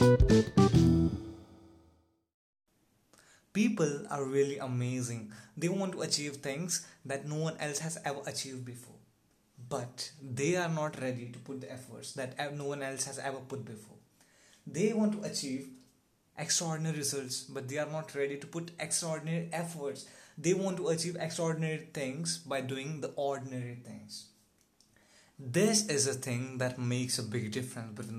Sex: male